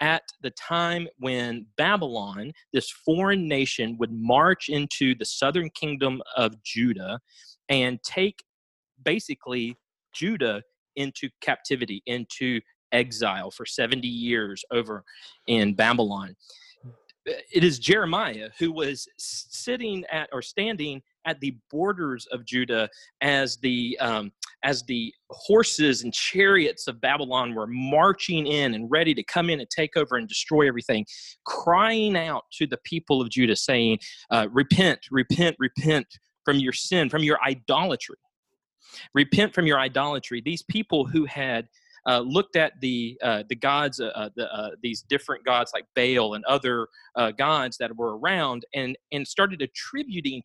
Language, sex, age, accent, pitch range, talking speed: English, male, 30-49, American, 120-165 Hz, 145 wpm